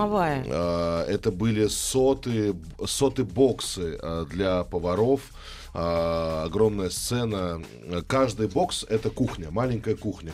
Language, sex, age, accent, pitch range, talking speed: Russian, male, 20-39, native, 90-120 Hz, 85 wpm